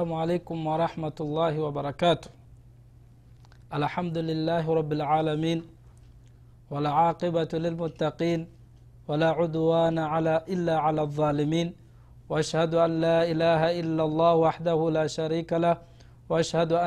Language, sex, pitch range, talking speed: Swahili, male, 150-170 Hz, 100 wpm